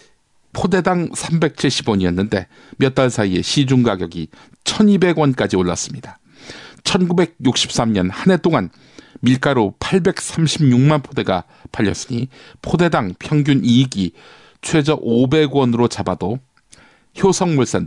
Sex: male